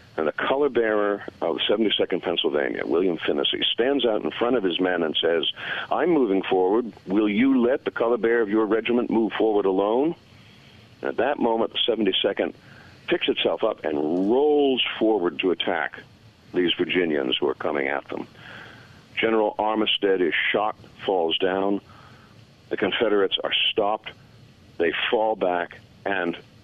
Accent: American